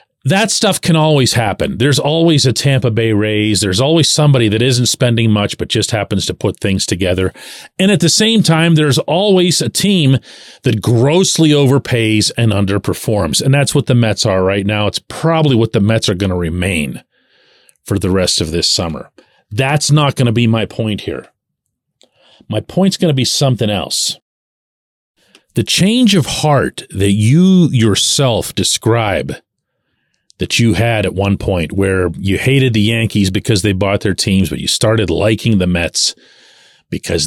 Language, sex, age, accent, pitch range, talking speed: English, male, 40-59, American, 100-135 Hz, 175 wpm